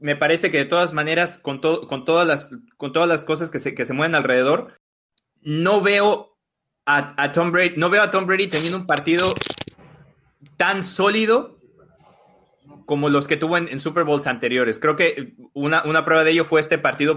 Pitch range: 140-175 Hz